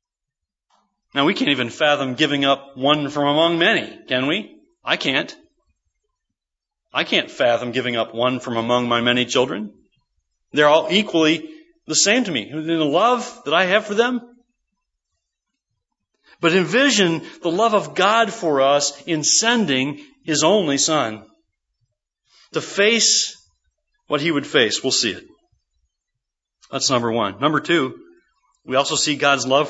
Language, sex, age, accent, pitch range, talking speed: English, male, 40-59, American, 145-240 Hz, 145 wpm